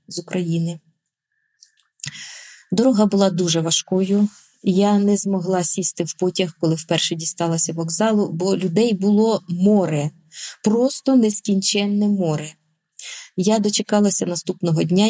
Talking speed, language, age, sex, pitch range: 105 wpm, Ukrainian, 20-39, female, 170-210 Hz